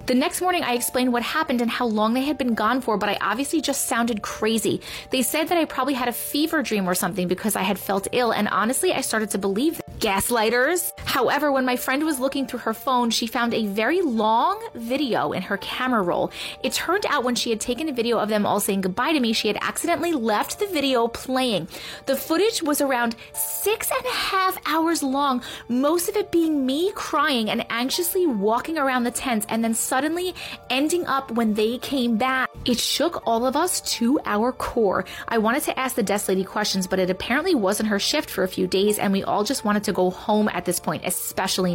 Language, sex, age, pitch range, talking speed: English, female, 30-49, 210-285 Hz, 225 wpm